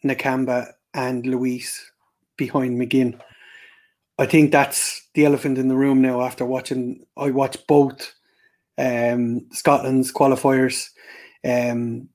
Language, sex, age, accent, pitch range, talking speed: English, male, 30-49, Irish, 130-150 Hz, 115 wpm